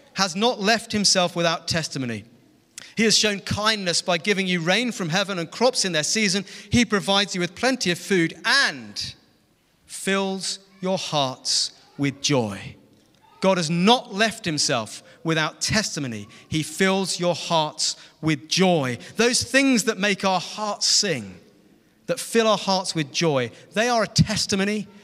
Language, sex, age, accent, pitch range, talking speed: English, male, 40-59, British, 145-200 Hz, 155 wpm